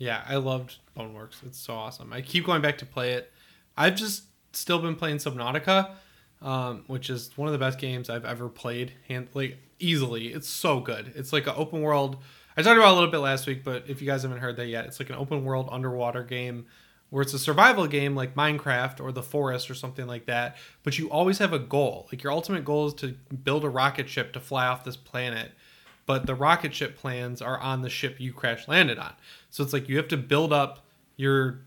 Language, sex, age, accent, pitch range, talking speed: English, male, 20-39, American, 125-150 Hz, 235 wpm